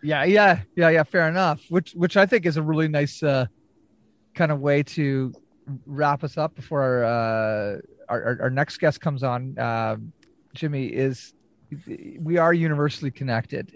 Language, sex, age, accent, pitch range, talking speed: English, male, 30-49, American, 135-165 Hz, 170 wpm